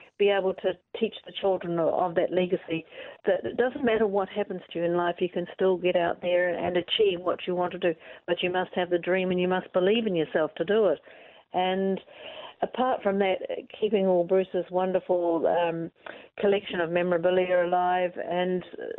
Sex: female